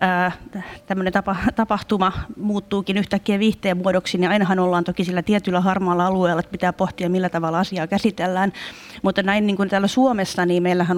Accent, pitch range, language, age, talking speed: native, 180-200 Hz, Finnish, 30-49, 170 wpm